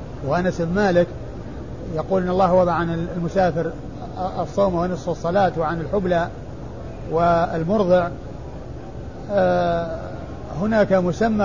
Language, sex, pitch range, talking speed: Arabic, male, 165-195 Hz, 90 wpm